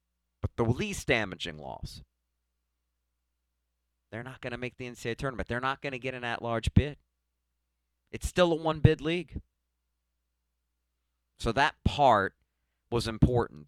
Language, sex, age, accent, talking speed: English, male, 50-69, American, 135 wpm